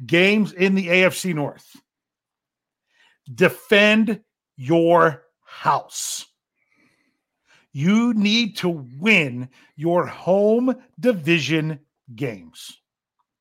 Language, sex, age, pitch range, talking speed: English, male, 50-69, 155-220 Hz, 70 wpm